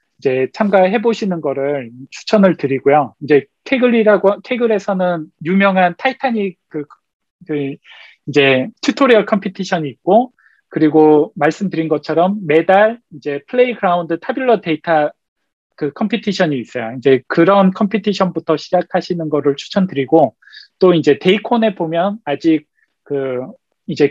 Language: Korean